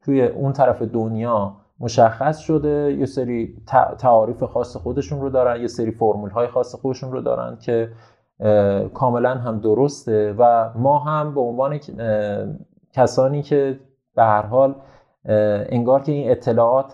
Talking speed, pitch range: 140 wpm, 115-145 Hz